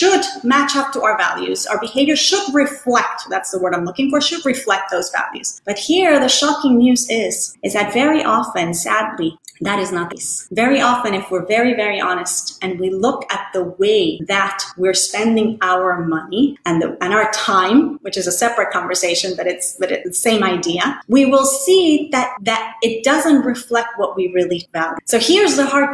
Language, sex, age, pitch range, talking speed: English, female, 30-49, 200-290 Hz, 200 wpm